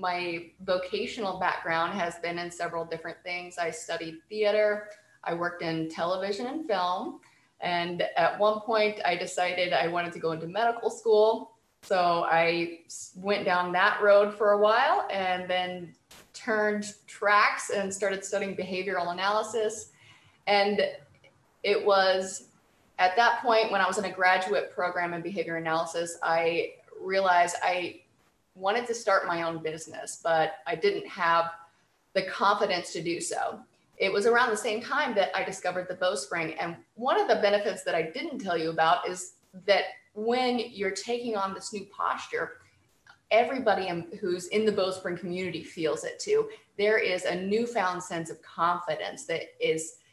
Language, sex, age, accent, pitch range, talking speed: English, female, 20-39, American, 170-210 Hz, 160 wpm